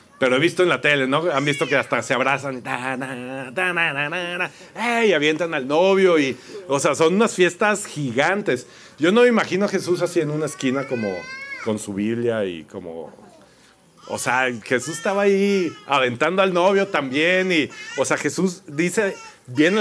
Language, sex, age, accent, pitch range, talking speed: Spanish, male, 40-59, Mexican, 130-180 Hz, 165 wpm